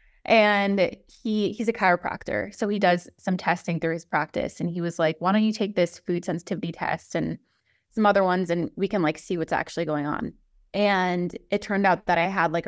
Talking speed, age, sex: 220 wpm, 20-39, female